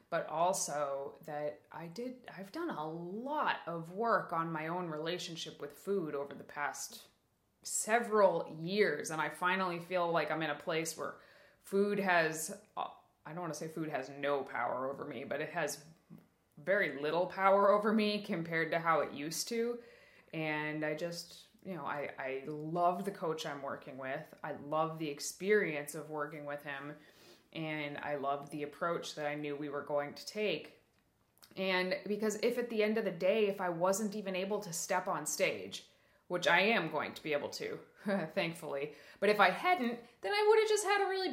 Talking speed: 190 wpm